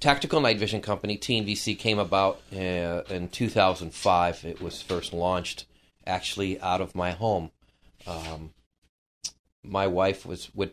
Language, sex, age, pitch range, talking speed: English, male, 30-49, 90-100 Hz, 135 wpm